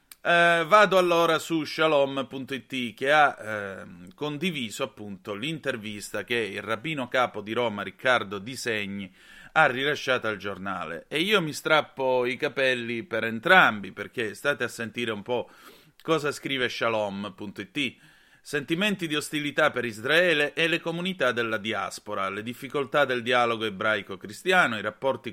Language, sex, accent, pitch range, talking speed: Italian, male, native, 110-165 Hz, 135 wpm